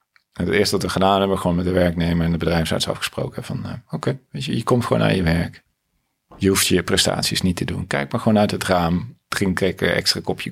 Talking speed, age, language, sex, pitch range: 245 wpm, 40-59, Dutch, male, 85-115 Hz